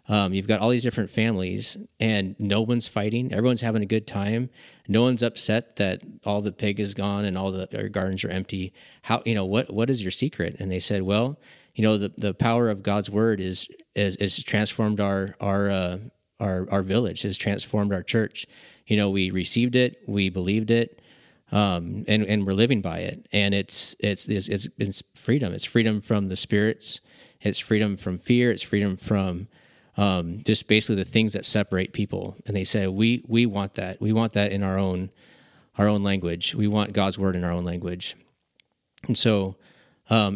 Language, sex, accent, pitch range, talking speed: English, male, American, 95-110 Hz, 200 wpm